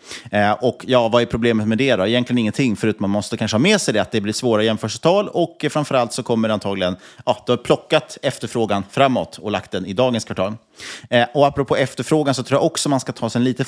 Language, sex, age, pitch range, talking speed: Swedish, male, 30-49, 105-130 Hz, 250 wpm